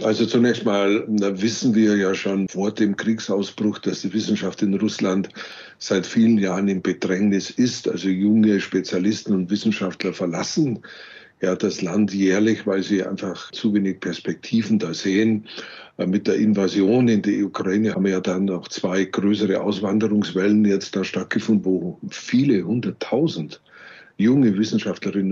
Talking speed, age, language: 145 wpm, 60-79, German